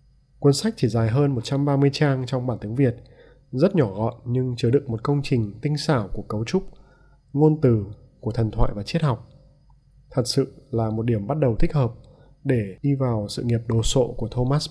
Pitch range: 120-145 Hz